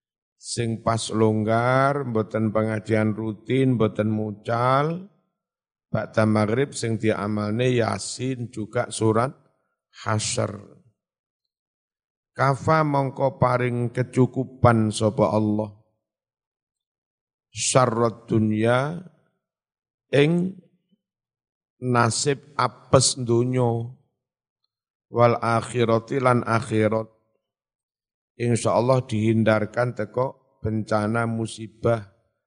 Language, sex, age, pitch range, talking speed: Indonesian, male, 50-69, 110-130 Hz, 70 wpm